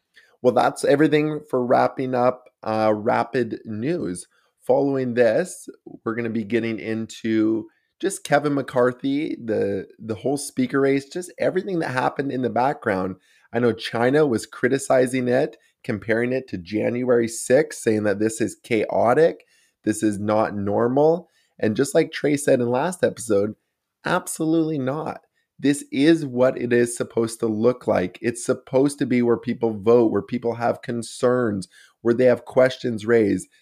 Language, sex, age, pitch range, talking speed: English, male, 20-39, 105-130 Hz, 155 wpm